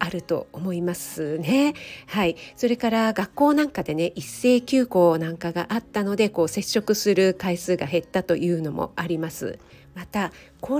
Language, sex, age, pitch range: Japanese, female, 40-59, 175-230 Hz